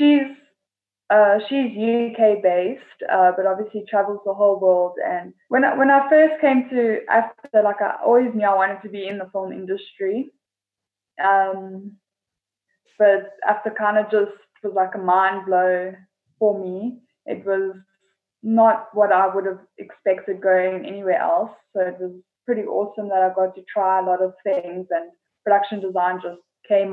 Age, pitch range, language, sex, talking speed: 10-29, 190-225 Hz, English, female, 170 wpm